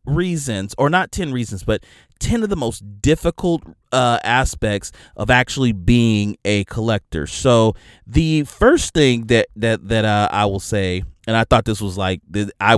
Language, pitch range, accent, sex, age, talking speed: English, 95-130 Hz, American, male, 30-49, 170 wpm